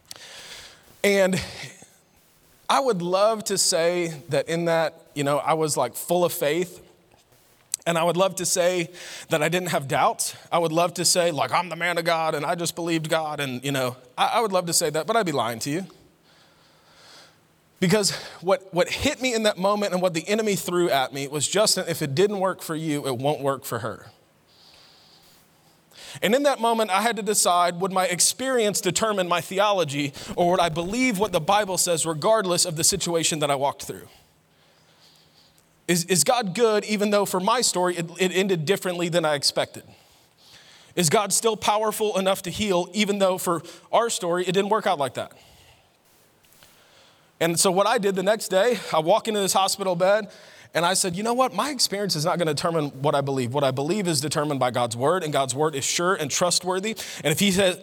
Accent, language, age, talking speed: American, English, 30-49, 210 wpm